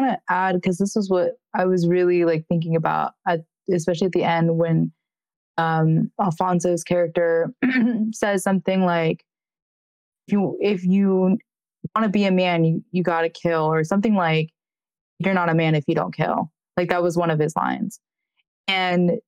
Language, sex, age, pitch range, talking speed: English, female, 20-39, 160-190 Hz, 175 wpm